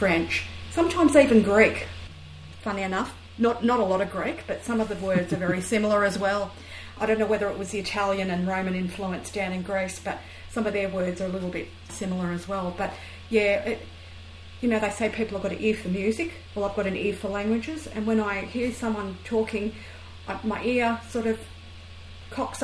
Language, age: English, 40-59